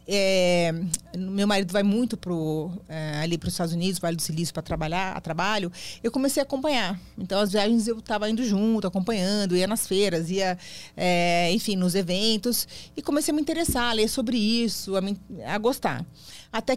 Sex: female